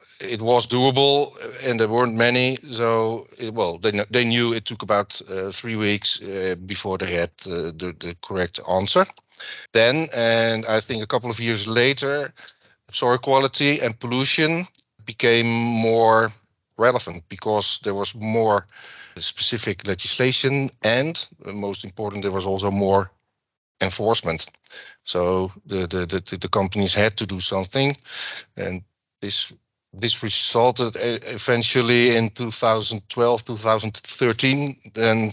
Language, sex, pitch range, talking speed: English, male, 105-125 Hz, 130 wpm